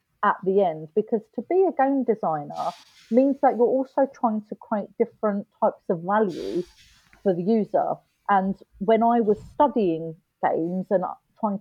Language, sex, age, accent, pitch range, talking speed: English, female, 30-49, British, 185-235 Hz, 160 wpm